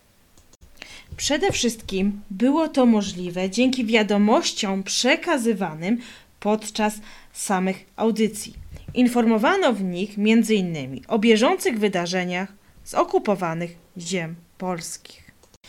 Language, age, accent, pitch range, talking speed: Polish, 20-39, native, 200-305 Hz, 85 wpm